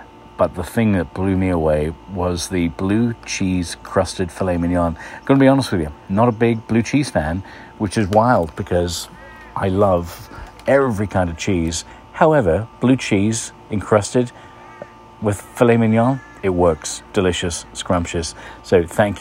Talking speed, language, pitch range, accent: 150 wpm, English, 85-105 Hz, British